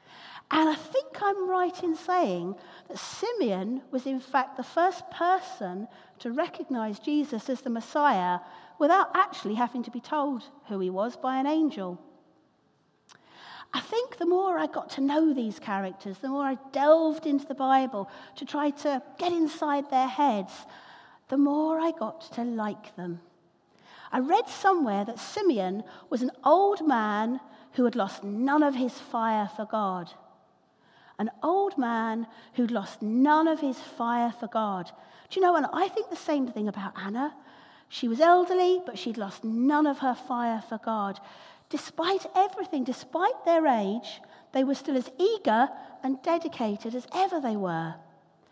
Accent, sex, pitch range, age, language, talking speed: British, female, 215-315 Hz, 50-69, English, 165 wpm